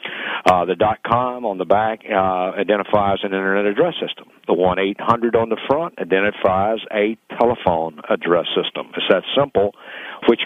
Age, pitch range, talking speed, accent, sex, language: 50-69, 95-115 Hz, 150 wpm, American, male, English